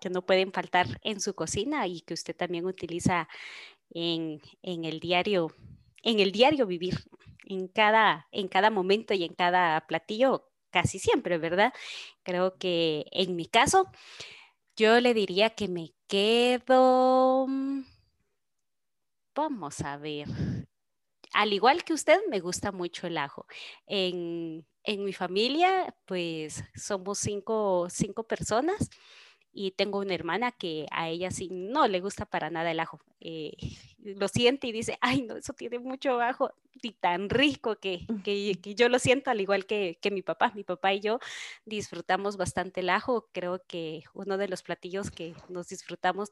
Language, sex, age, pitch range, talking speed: Spanish, female, 30-49, 175-225 Hz, 155 wpm